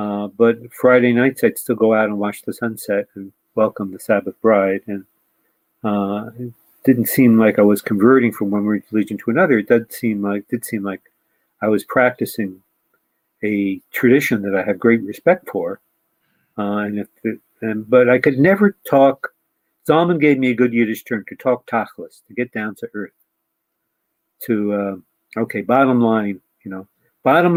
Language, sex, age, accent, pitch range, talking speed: English, male, 50-69, American, 100-120 Hz, 180 wpm